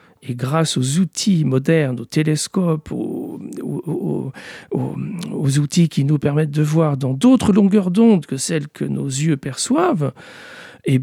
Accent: French